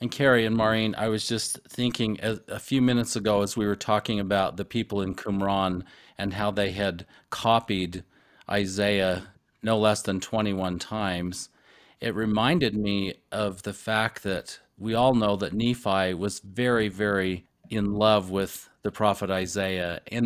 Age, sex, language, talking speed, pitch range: 40-59, male, English, 160 wpm, 100-115 Hz